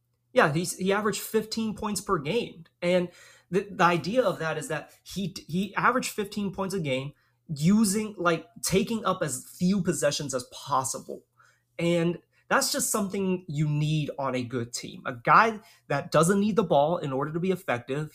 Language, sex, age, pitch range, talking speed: English, male, 30-49, 140-195 Hz, 175 wpm